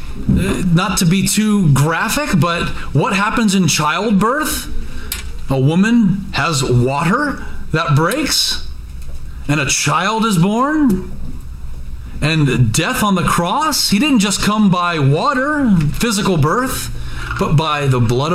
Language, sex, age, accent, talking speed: English, male, 40-59, American, 125 wpm